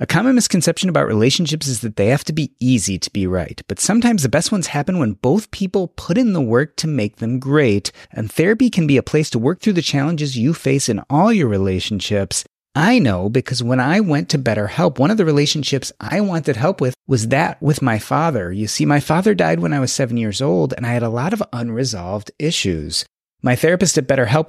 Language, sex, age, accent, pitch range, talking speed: English, male, 30-49, American, 115-160 Hz, 230 wpm